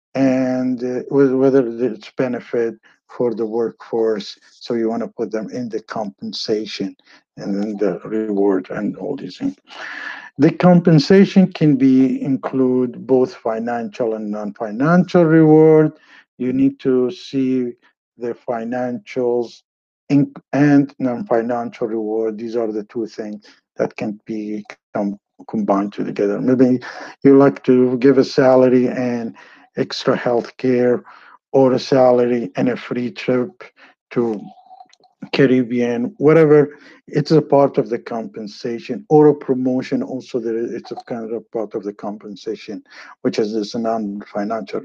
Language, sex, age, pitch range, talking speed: English, male, 50-69, 115-140 Hz, 130 wpm